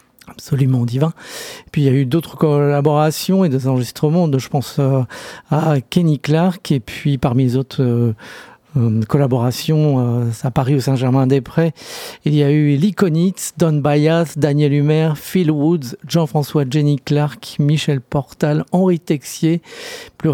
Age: 50-69